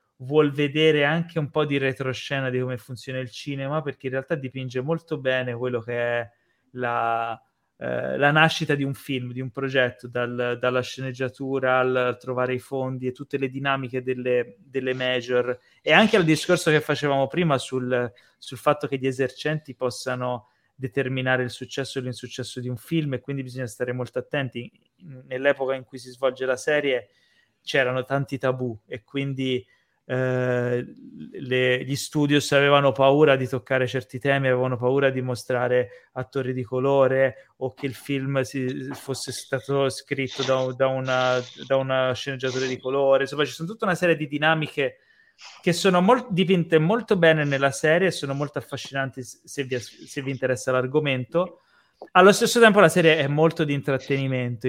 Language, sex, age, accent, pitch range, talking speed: Italian, male, 20-39, native, 125-145 Hz, 165 wpm